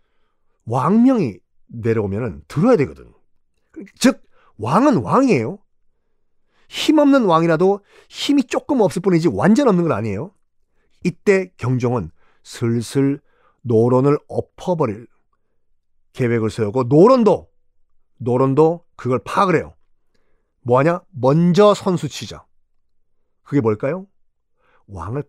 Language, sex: Korean, male